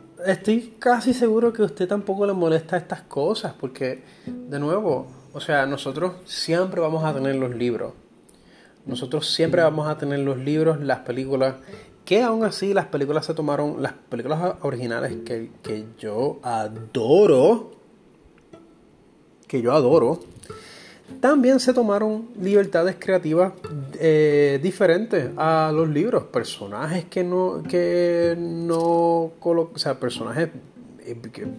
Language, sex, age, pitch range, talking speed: Spanish, male, 30-49, 135-180 Hz, 130 wpm